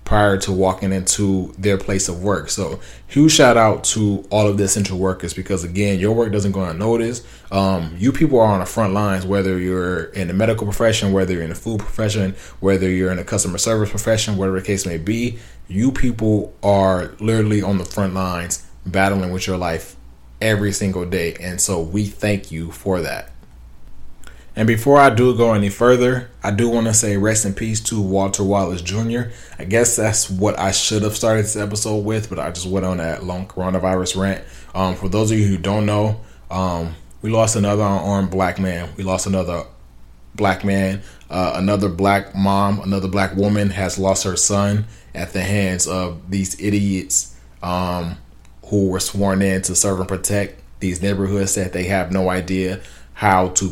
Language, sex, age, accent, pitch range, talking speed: English, male, 20-39, American, 90-105 Hz, 190 wpm